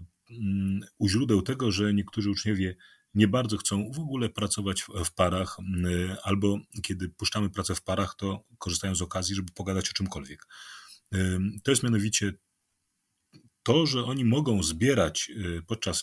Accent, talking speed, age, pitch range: native, 140 wpm, 40-59, 95-130 Hz